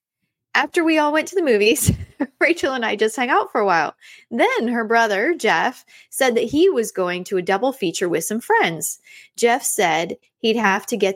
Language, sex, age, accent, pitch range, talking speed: English, female, 20-39, American, 195-300 Hz, 205 wpm